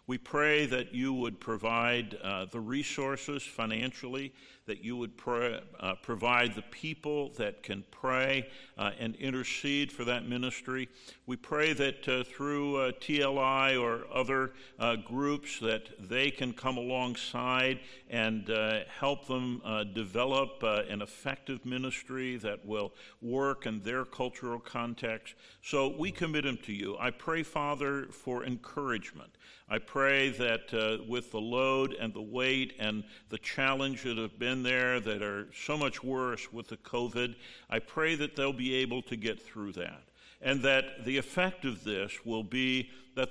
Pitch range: 115-135 Hz